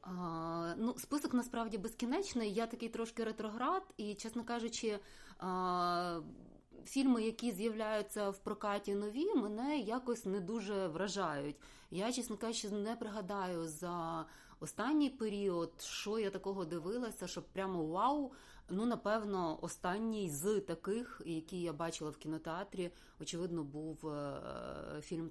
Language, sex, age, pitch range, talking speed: Ukrainian, female, 20-39, 160-215 Hz, 120 wpm